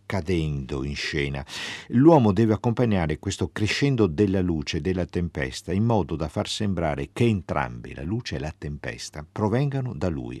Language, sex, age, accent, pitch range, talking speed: Italian, male, 50-69, native, 80-115 Hz, 155 wpm